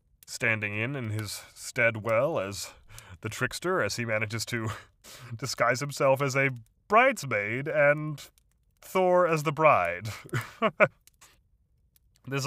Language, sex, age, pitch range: English, male, 30-49, 115-155 Hz